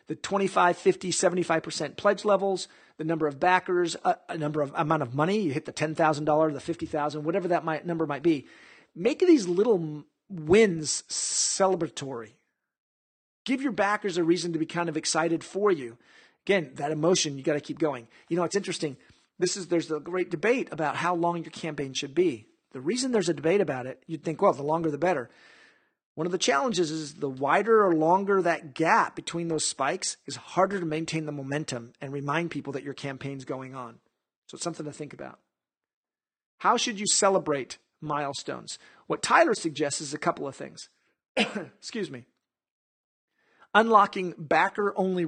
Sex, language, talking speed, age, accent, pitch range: male, English, 180 wpm, 40-59, American, 150-190 Hz